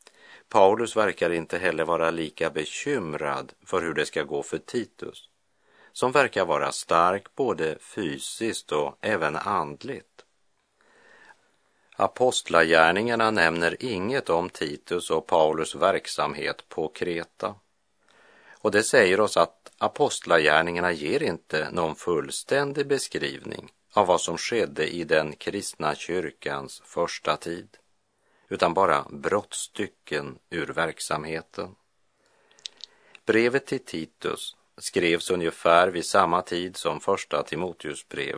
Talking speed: 110 wpm